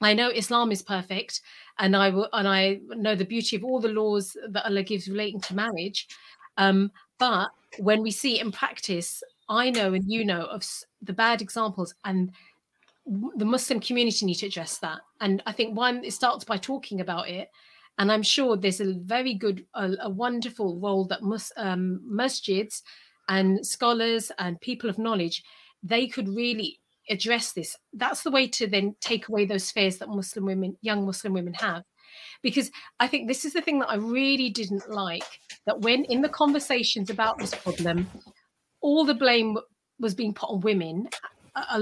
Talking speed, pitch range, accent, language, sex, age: 185 wpm, 195-245 Hz, British, English, female, 40-59